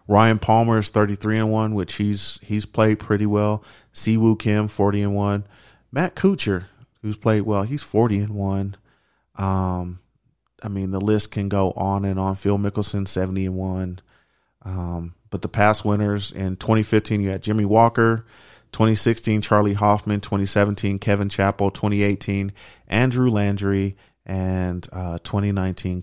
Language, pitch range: English, 95-110 Hz